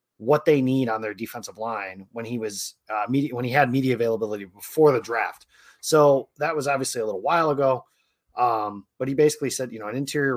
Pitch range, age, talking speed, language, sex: 115-140 Hz, 30-49, 215 wpm, English, male